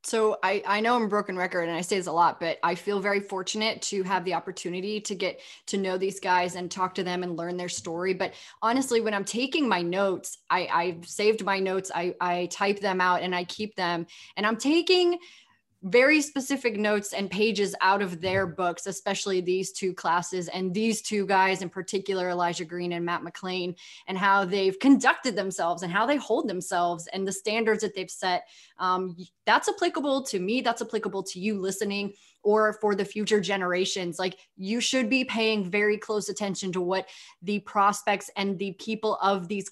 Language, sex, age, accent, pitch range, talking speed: English, female, 20-39, American, 185-210 Hz, 200 wpm